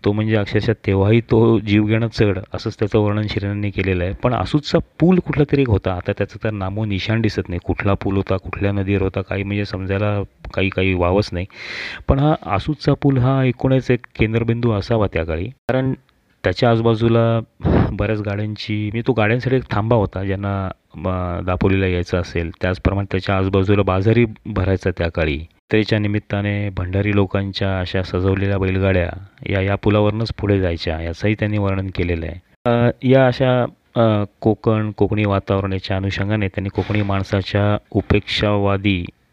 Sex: male